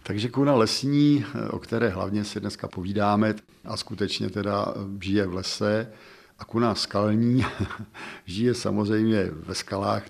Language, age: Czech, 50-69